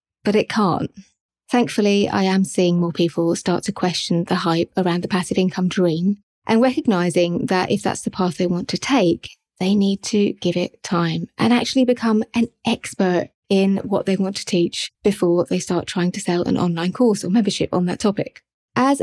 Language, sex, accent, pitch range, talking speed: English, female, British, 175-215 Hz, 195 wpm